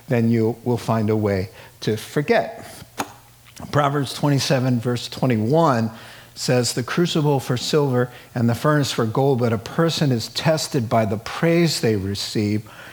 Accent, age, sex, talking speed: American, 50-69, male, 150 wpm